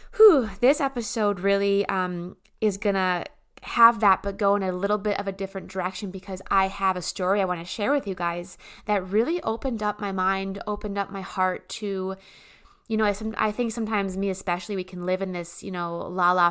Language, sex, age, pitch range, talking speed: English, female, 20-39, 185-220 Hz, 205 wpm